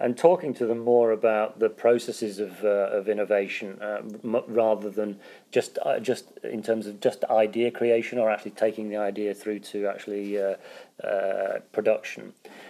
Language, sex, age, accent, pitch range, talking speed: English, male, 30-49, British, 100-115 Hz, 170 wpm